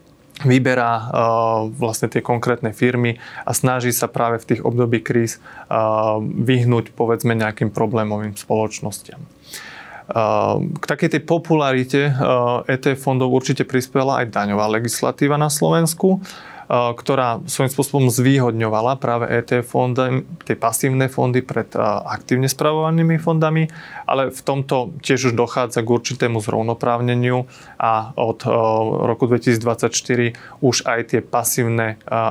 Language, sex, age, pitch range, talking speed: Slovak, male, 30-49, 115-135 Hz, 125 wpm